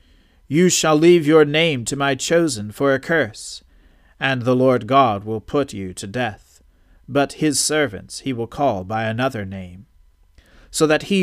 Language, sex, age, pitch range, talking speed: English, male, 40-59, 105-155 Hz, 170 wpm